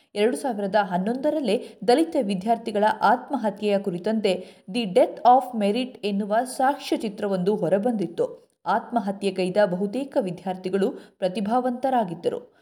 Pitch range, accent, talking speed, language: 200-255 Hz, native, 85 wpm, Kannada